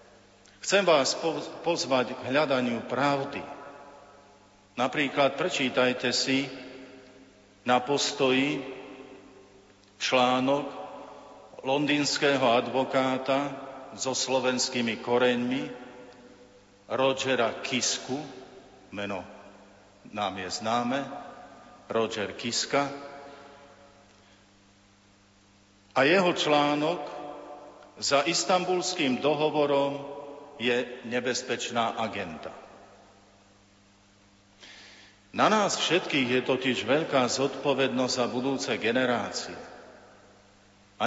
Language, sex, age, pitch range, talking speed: Slovak, male, 50-69, 115-140 Hz, 65 wpm